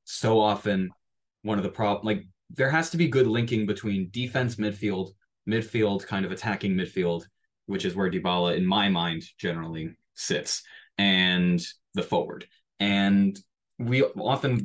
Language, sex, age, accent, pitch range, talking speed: English, male, 20-39, American, 100-115 Hz, 150 wpm